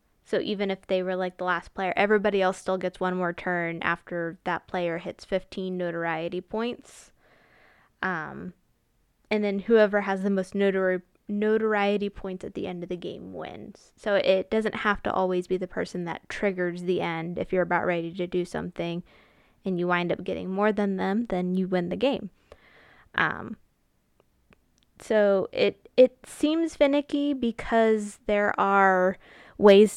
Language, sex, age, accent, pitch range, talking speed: English, female, 20-39, American, 180-210 Hz, 165 wpm